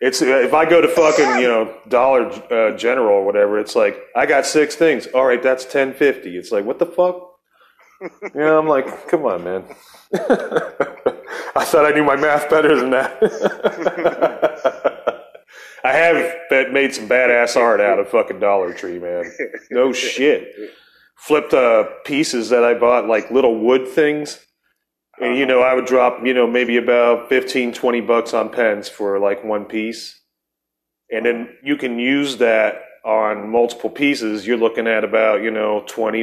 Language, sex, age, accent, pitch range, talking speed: English, male, 30-49, American, 115-165 Hz, 170 wpm